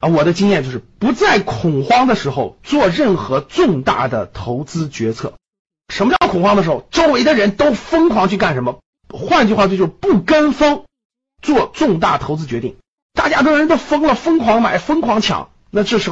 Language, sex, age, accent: Chinese, male, 50-69, native